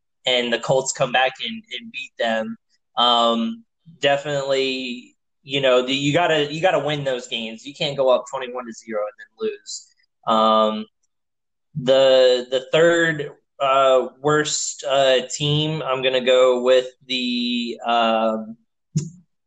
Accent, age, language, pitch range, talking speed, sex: American, 10-29, English, 125-150 Hz, 140 wpm, male